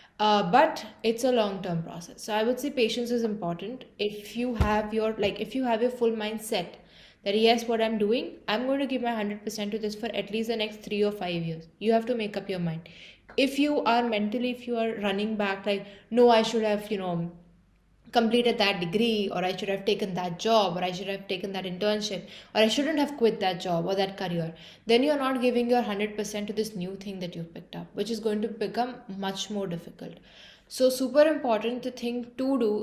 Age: 20-39